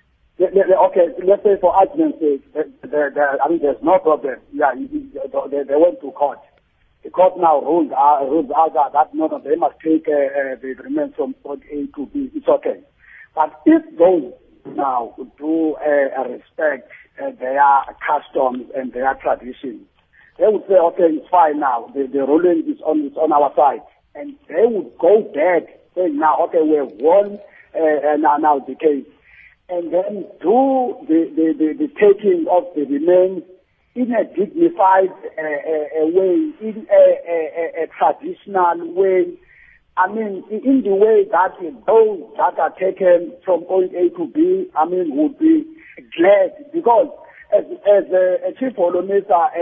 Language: English